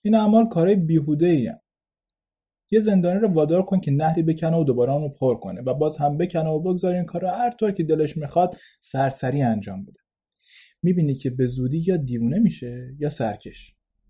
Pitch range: 130-175 Hz